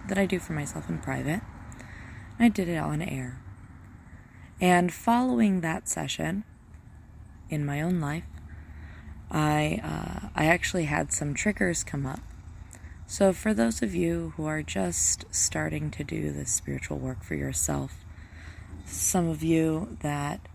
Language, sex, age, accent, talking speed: English, female, 20-39, American, 145 wpm